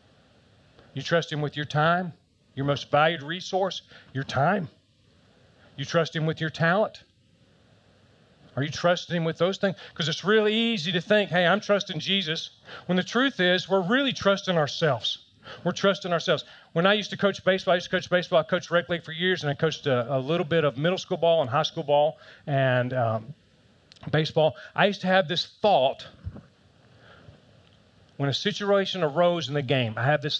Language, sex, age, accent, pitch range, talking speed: English, male, 40-59, American, 150-195 Hz, 190 wpm